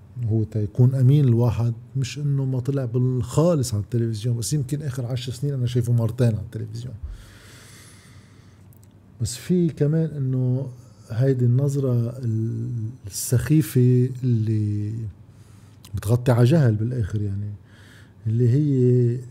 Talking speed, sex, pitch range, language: 115 wpm, male, 110-130 Hz, Arabic